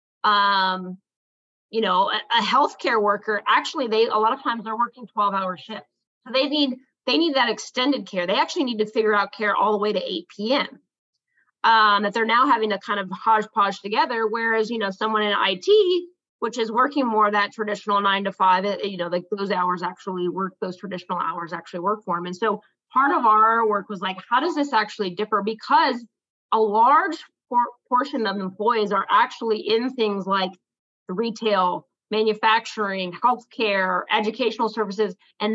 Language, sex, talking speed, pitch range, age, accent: English, female, 185 wpm, 195-230 Hz, 20-39, American